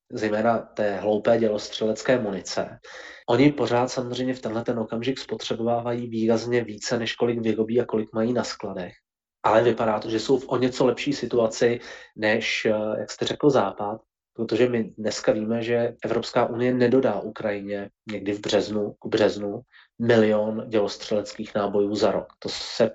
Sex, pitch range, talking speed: male, 105-125 Hz, 155 wpm